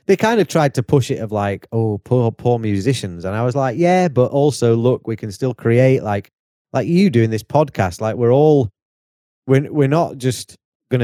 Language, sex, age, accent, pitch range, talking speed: English, male, 30-49, British, 95-125 Hz, 210 wpm